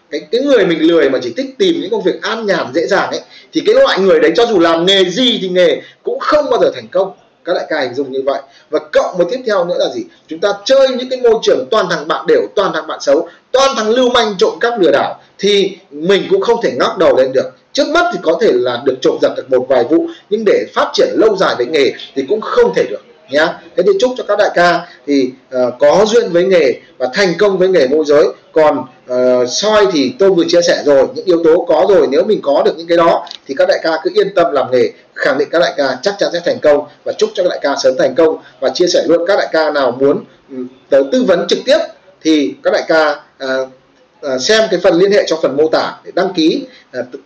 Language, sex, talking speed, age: Vietnamese, male, 270 wpm, 20-39